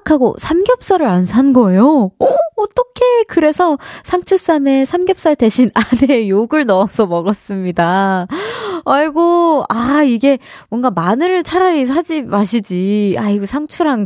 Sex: female